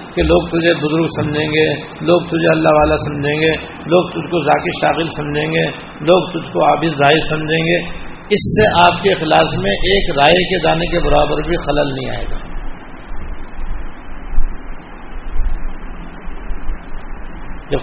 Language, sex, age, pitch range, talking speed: Urdu, male, 60-79, 150-185 Hz, 150 wpm